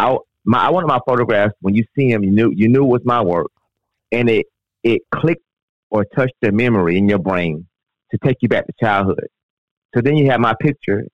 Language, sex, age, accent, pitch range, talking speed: English, male, 30-49, American, 95-120 Hz, 220 wpm